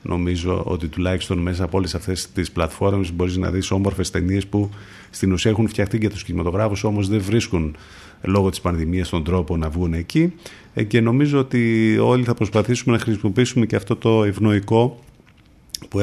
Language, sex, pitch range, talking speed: Greek, male, 90-120 Hz, 170 wpm